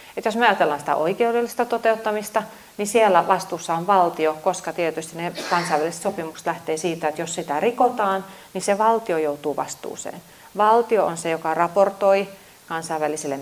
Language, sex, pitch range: Finnish, female, 165-195 Hz